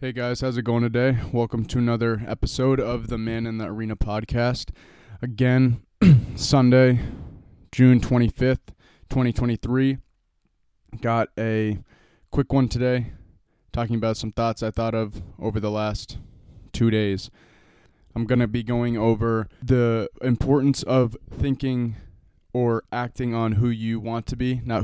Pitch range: 110-125 Hz